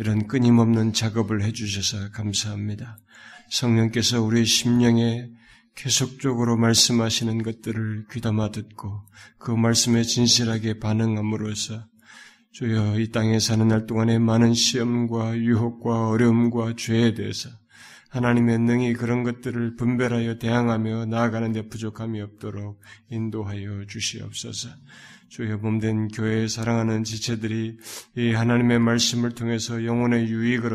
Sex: male